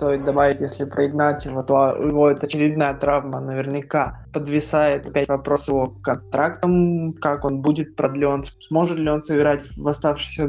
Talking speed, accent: 150 wpm, native